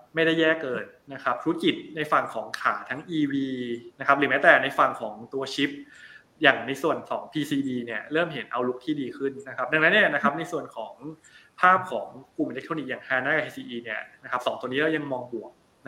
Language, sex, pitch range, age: Thai, male, 125-160 Hz, 20-39